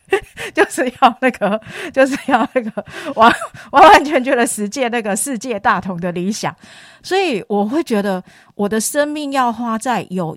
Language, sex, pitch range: Chinese, female, 180-245 Hz